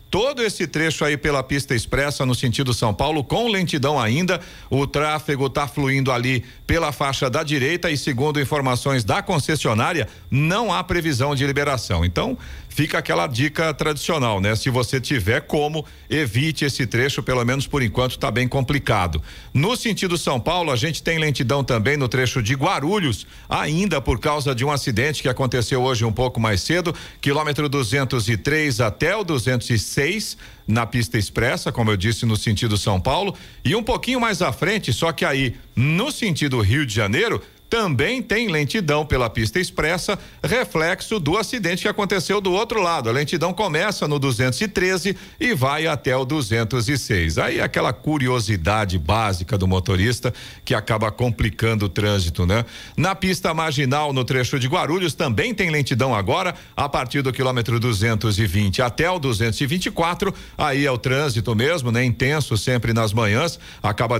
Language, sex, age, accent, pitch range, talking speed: Portuguese, male, 50-69, Brazilian, 120-160 Hz, 165 wpm